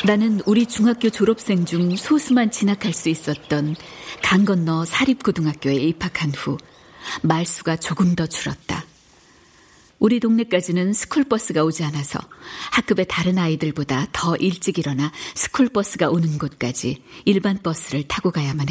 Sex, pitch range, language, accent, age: female, 155-205 Hz, Korean, native, 60-79